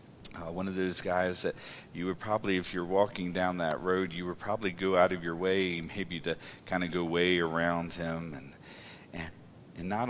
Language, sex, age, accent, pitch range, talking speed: English, male, 40-59, American, 90-110 Hz, 210 wpm